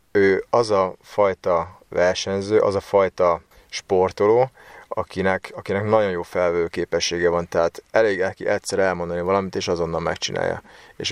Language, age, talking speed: Hungarian, 30-49, 140 wpm